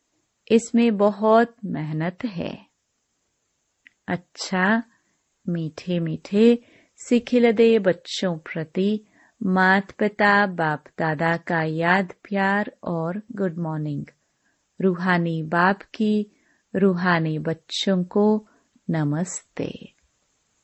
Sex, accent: female, native